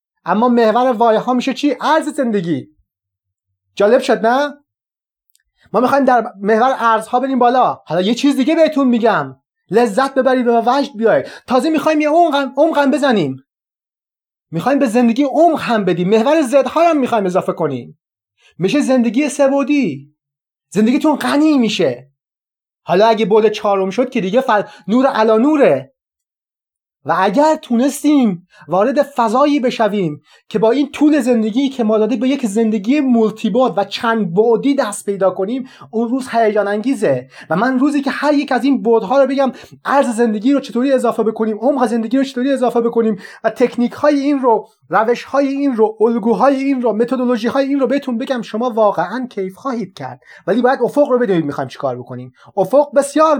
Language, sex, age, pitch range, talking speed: Persian, male, 30-49, 210-275 Hz, 165 wpm